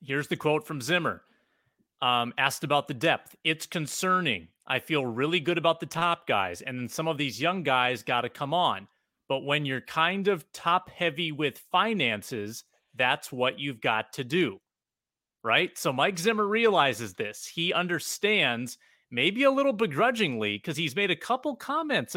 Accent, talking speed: American, 175 wpm